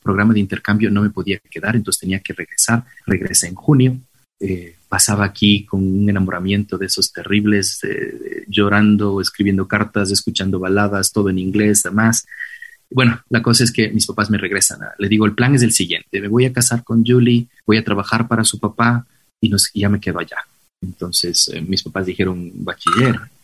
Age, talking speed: 30-49, 190 wpm